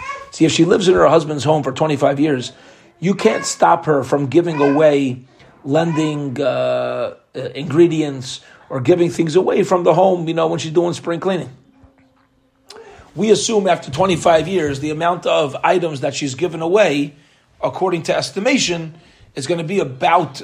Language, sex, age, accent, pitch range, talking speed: English, male, 40-59, American, 145-195 Hz, 165 wpm